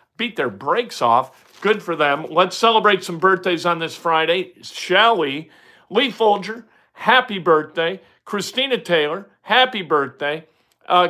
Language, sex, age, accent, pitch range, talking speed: English, male, 50-69, American, 165-220 Hz, 135 wpm